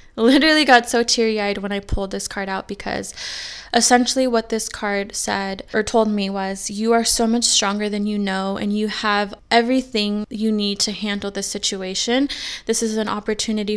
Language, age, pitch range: English, 20-39, 200-235 Hz